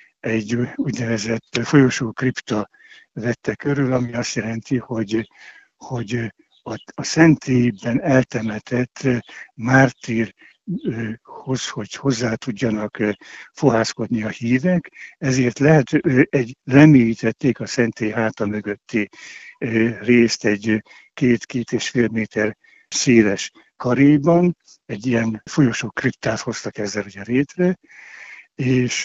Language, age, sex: Hungarian, 60-79, male